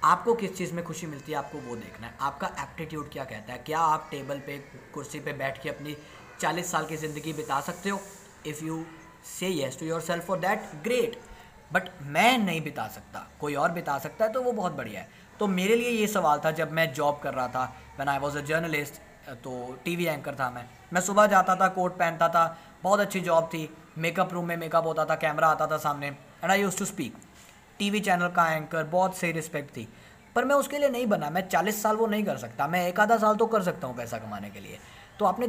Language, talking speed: English, 185 wpm